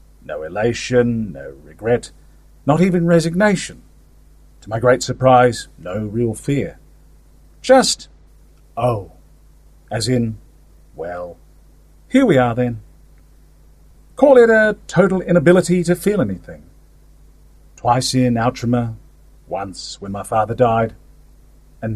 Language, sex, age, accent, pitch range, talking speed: English, male, 40-59, British, 95-155 Hz, 110 wpm